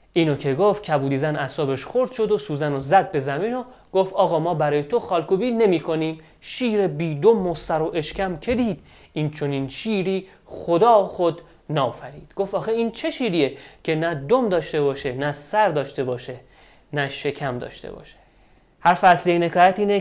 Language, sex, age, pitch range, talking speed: Persian, male, 30-49, 145-190 Hz, 170 wpm